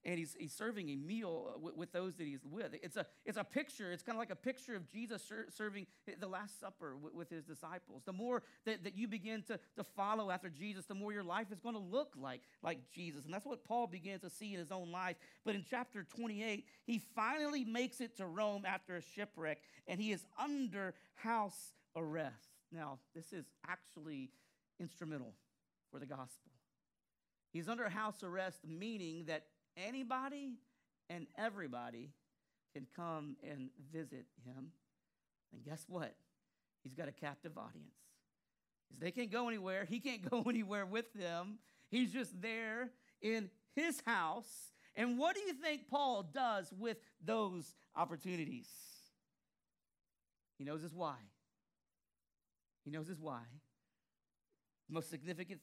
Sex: male